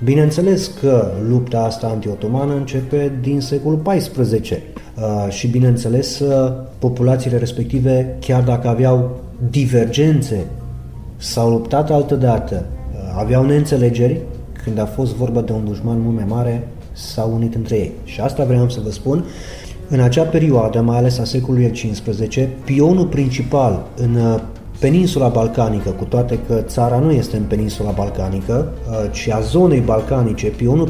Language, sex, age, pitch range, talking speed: Romanian, male, 30-49, 110-135 Hz, 135 wpm